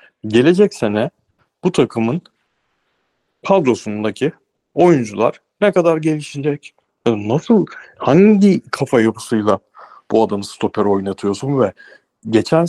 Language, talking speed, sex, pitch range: Turkish, 90 wpm, male, 115-175 Hz